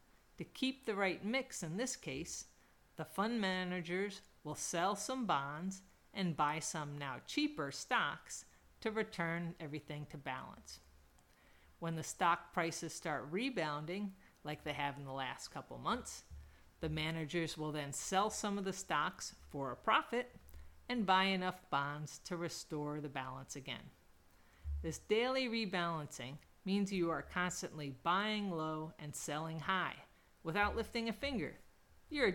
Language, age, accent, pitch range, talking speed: English, 40-59, American, 145-195 Hz, 145 wpm